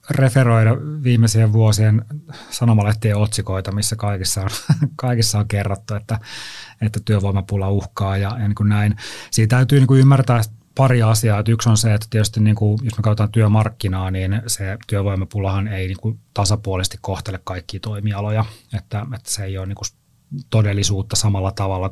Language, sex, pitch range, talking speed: Finnish, male, 100-115 Hz, 150 wpm